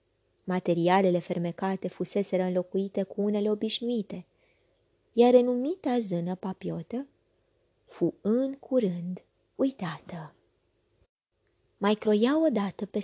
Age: 20-39